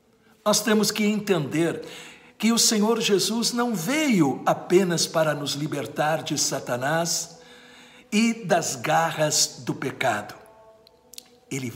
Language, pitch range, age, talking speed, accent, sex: Portuguese, 145-220 Hz, 60-79, 110 wpm, Brazilian, male